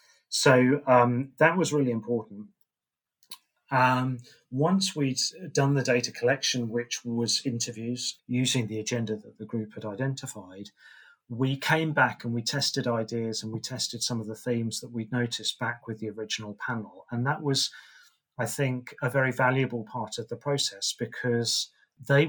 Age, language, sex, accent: 40-59, English, male, British